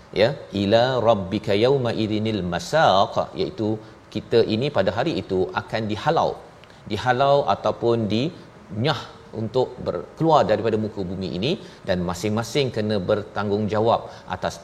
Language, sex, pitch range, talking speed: Malayalam, male, 95-115 Hz, 115 wpm